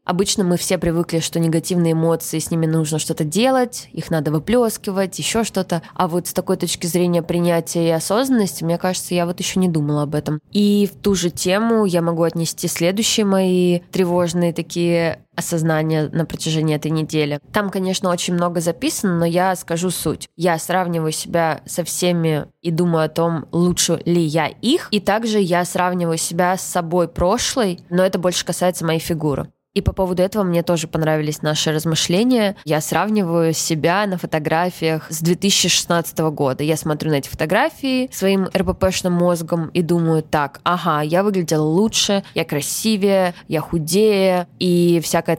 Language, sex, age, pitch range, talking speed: Russian, female, 20-39, 160-190 Hz, 165 wpm